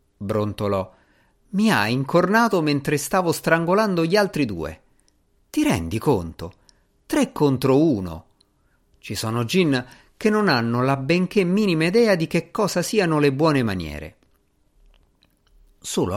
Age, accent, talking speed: 50-69, native, 125 wpm